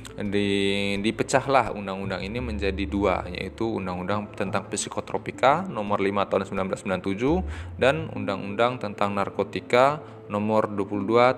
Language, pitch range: Indonesian, 100-120 Hz